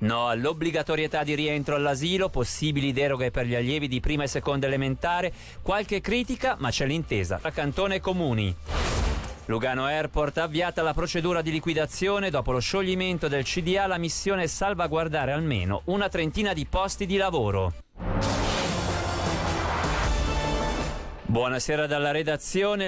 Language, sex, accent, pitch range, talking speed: Italian, male, native, 140-185 Hz, 135 wpm